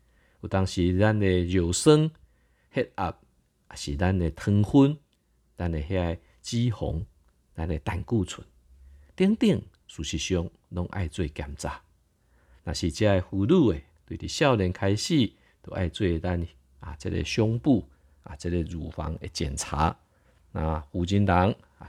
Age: 50-69